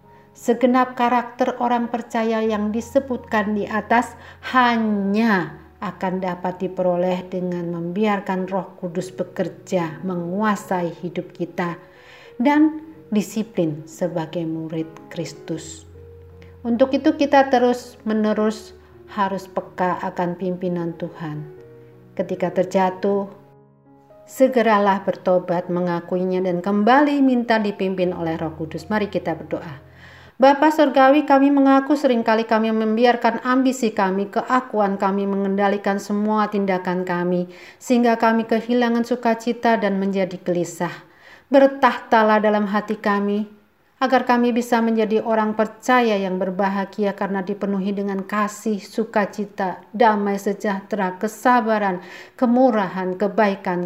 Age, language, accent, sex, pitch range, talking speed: 50-69, Indonesian, native, female, 180-225 Hz, 105 wpm